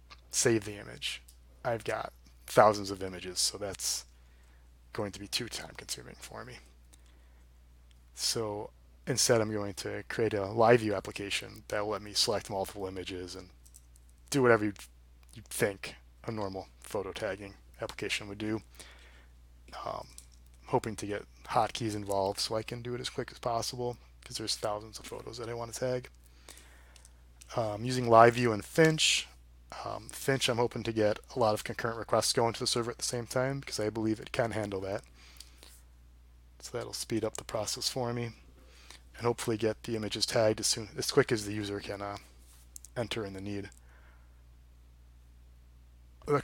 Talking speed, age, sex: 170 wpm, 20-39, male